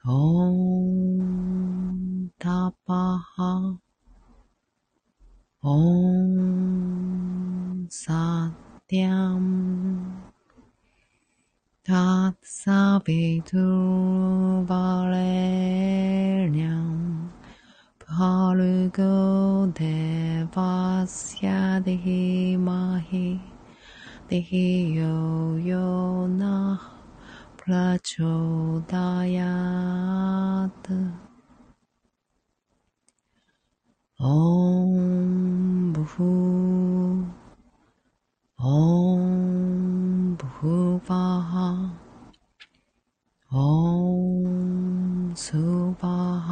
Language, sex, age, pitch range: Japanese, female, 30-49, 175-185 Hz